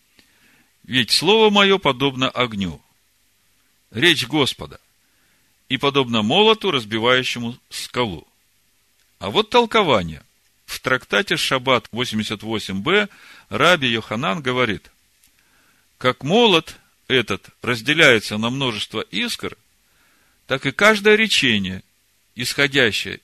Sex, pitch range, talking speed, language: male, 105-155 Hz, 90 wpm, Russian